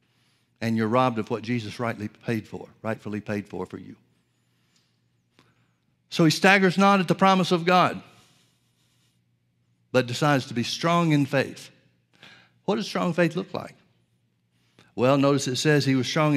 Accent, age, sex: American, 60-79, male